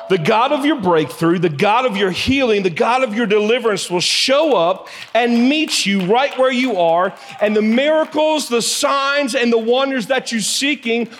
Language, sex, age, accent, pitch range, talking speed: English, male, 40-59, American, 155-240 Hz, 195 wpm